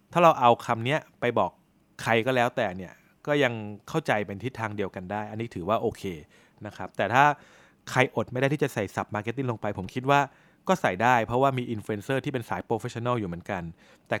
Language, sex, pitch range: Thai, male, 105-135 Hz